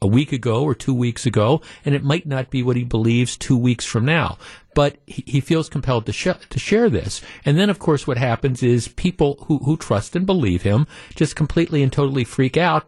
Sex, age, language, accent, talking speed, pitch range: male, 50-69, English, American, 225 wpm, 120-155 Hz